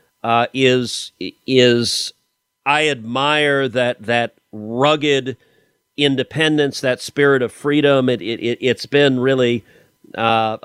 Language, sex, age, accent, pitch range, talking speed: English, male, 40-59, American, 115-150 Hz, 105 wpm